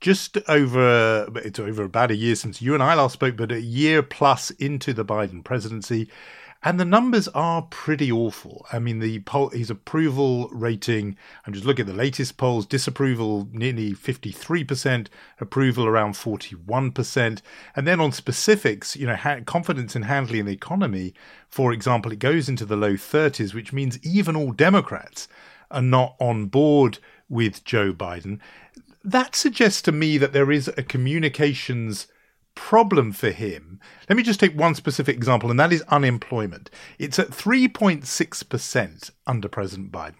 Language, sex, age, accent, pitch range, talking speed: English, male, 40-59, British, 110-150 Hz, 160 wpm